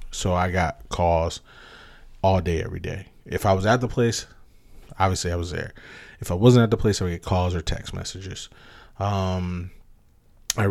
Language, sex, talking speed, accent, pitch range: English, male, 185 wpm, American, 85-105 Hz